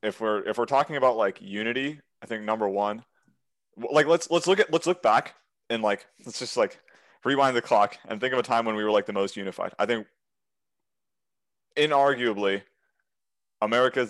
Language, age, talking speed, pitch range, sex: English, 20-39, 185 wpm, 100-120 Hz, male